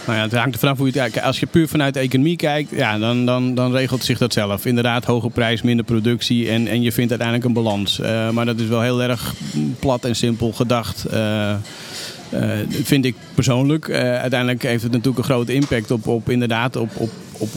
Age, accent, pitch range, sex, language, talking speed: 40-59, Dutch, 115-130 Hz, male, Dutch, 220 wpm